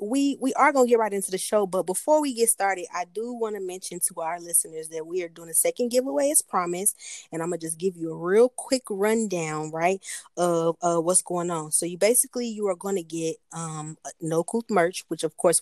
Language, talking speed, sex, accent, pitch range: English, 245 wpm, female, American, 165-205 Hz